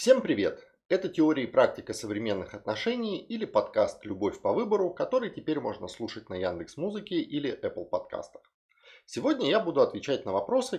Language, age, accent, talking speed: Russian, 30-49, native, 160 wpm